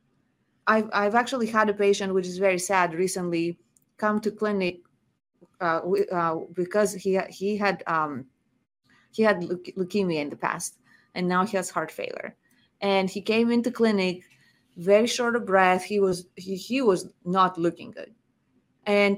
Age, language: 30-49, English